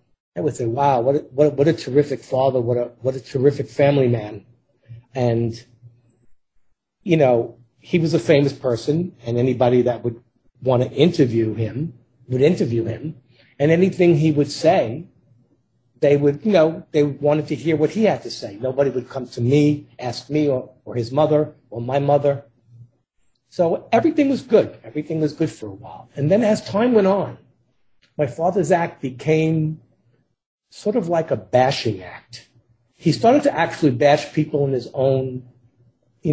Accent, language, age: American, English, 40-59